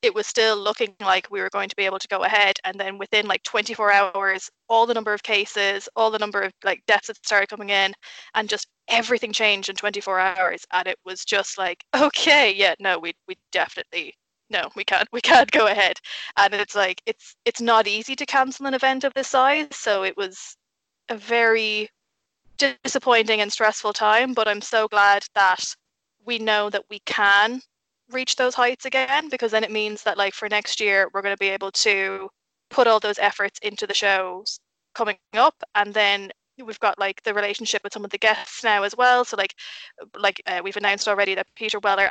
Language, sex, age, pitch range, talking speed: English, female, 20-39, 200-235 Hz, 210 wpm